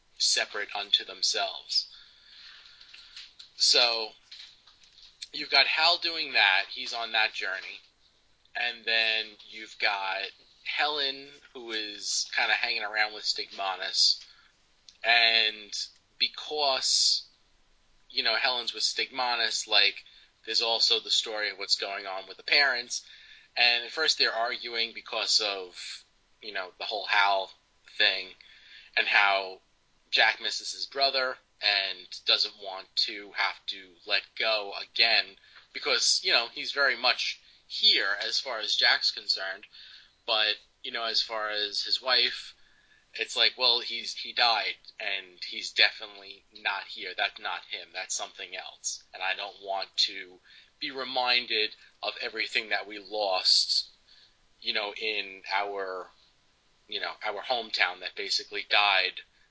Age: 30-49